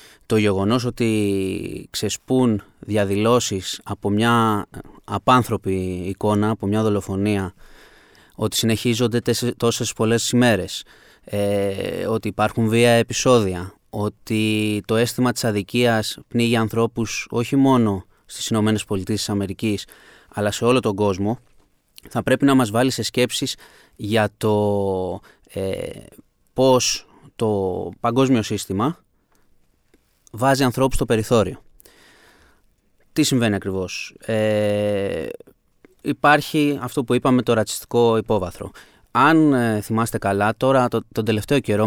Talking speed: 110 wpm